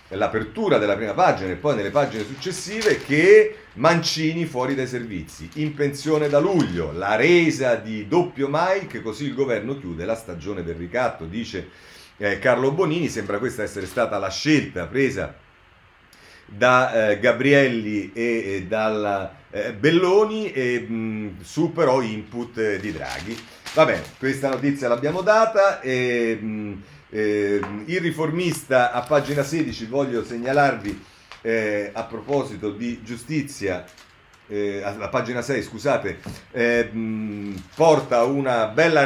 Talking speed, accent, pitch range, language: 125 wpm, native, 100-140 Hz, Italian